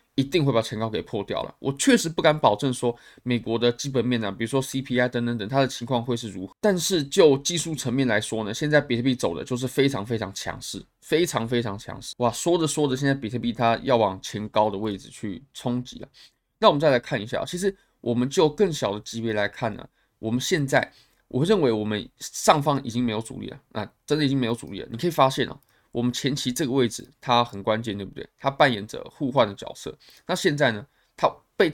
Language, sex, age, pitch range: Chinese, male, 20-39, 115-140 Hz